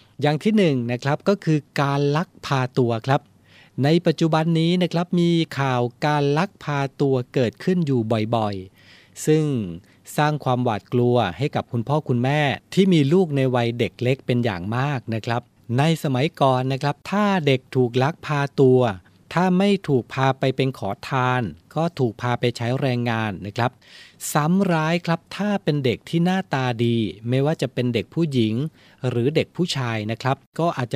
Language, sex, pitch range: Thai, male, 115-150 Hz